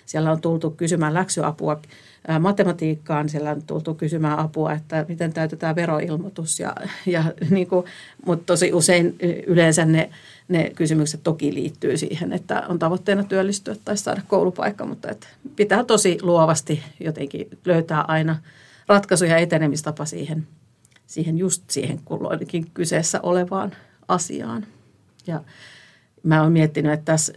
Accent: native